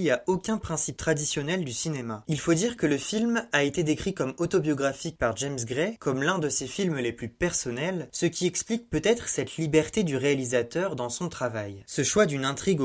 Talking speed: 200 wpm